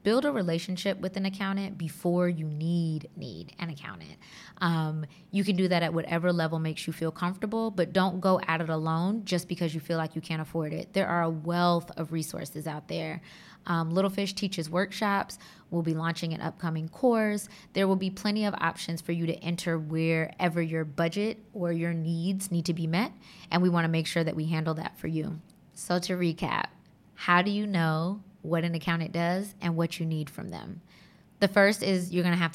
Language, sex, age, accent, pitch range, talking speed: English, female, 20-39, American, 160-180 Hz, 205 wpm